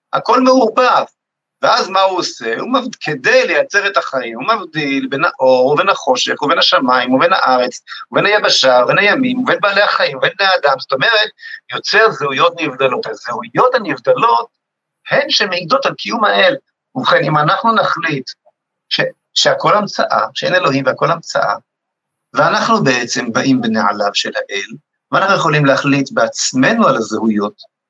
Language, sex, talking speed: Hebrew, male, 140 wpm